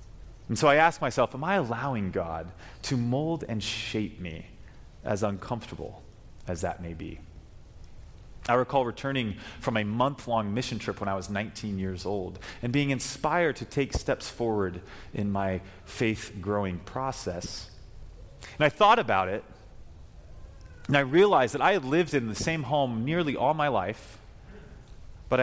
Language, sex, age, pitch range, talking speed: English, male, 30-49, 95-140 Hz, 155 wpm